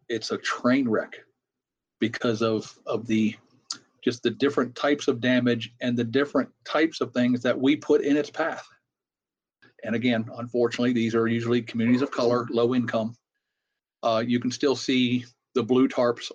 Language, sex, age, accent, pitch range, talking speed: English, male, 40-59, American, 115-135 Hz, 165 wpm